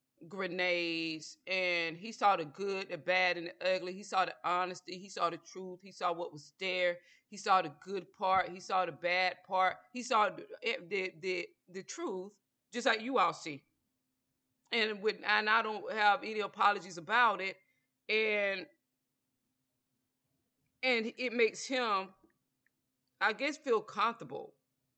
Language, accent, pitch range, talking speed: English, American, 155-215 Hz, 155 wpm